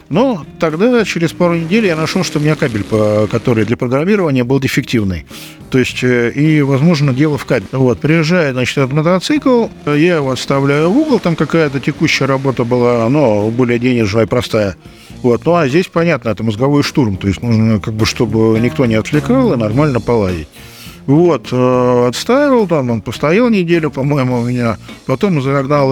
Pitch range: 115-160 Hz